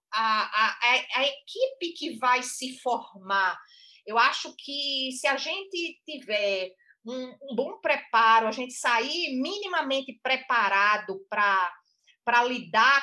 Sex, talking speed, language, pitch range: female, 115 wpm, Portuguese, 215-285 Hz